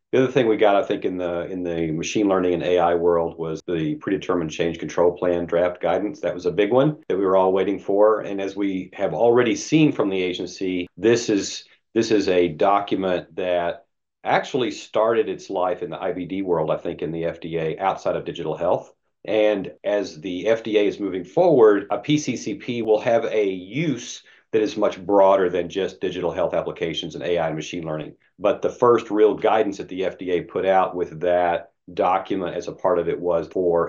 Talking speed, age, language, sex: 205 wpm, 40-59, English, male